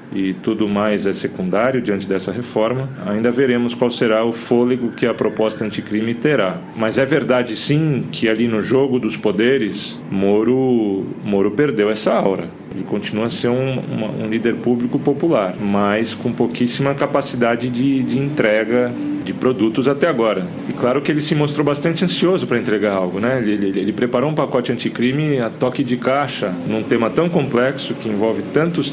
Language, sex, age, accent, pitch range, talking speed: Portuguese, male, 40-59, Brazilian, 105-140 Hz, 175 wpm